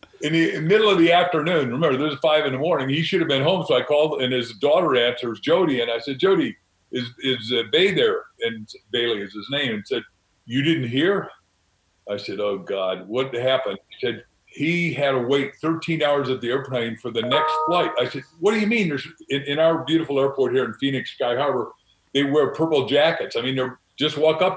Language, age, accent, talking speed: English, 50-69, American, 225 wpm